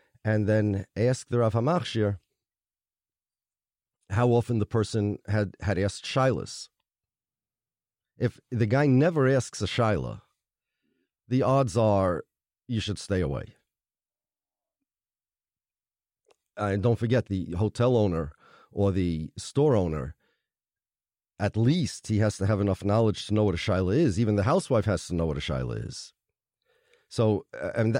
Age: 40-59